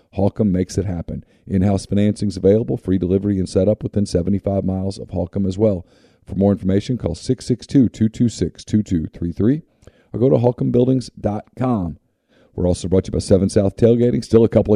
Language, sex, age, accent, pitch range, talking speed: English, male, 40-59, American, 90-110 Hz, 160 wpm